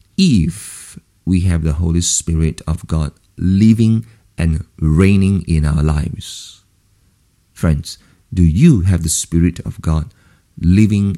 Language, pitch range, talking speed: English, 85-105 Hz, 125 wpm